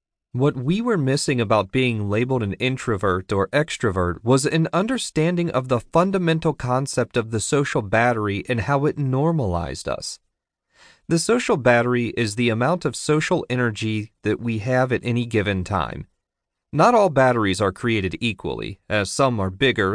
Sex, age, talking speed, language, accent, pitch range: male, 40-59, 160 wpm, English, American, 105-150 Hz